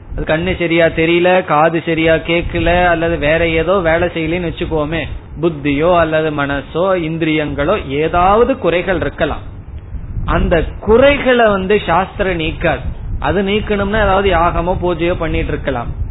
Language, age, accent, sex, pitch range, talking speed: Tamil, 30-49, native, male, 145-200 Hz, 110 wpm